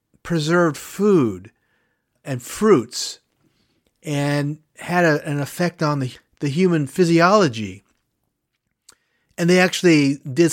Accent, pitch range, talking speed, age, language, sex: American, 130-180 Hz, 95 wpm, 40-59, English, male